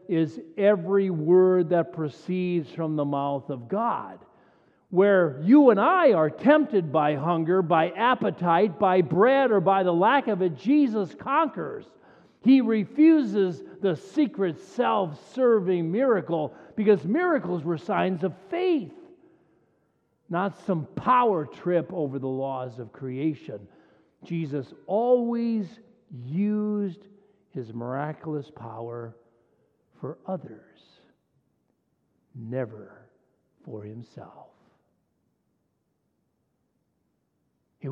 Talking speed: 100 wpm